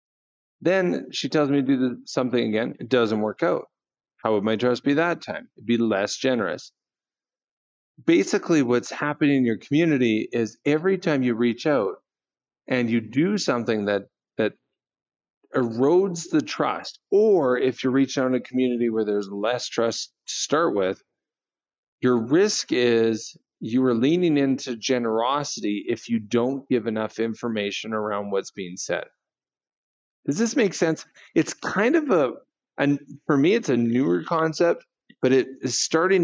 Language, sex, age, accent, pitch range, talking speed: English, male, 40-59, American, 115-155 Hz, 160 wpm